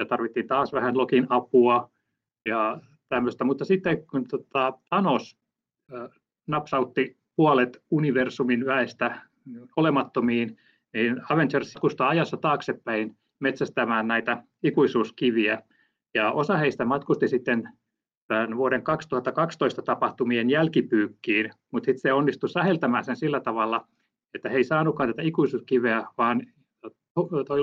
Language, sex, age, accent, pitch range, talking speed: Finnish, male, 30-49, native, 120-145 Hz, 105 wpm